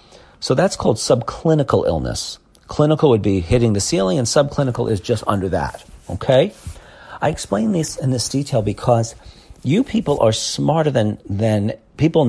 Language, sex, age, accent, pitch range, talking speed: English, male, 40-59, American, 100-130 Hz, 155 wpm